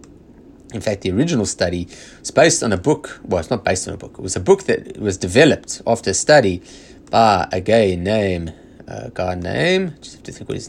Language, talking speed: English, 225 wpm